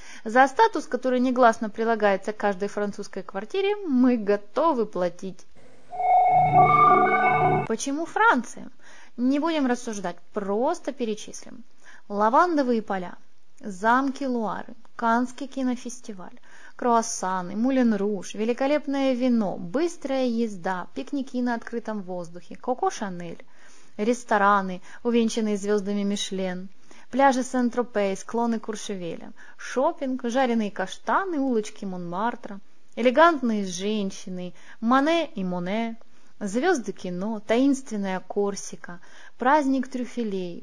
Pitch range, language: 205-275 Hz, Russian